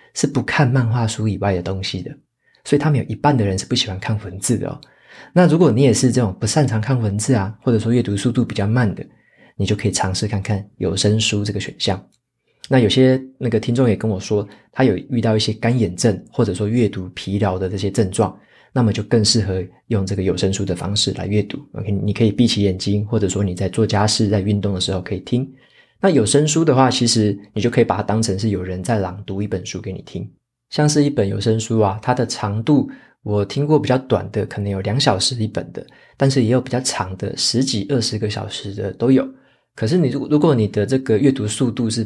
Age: 20-39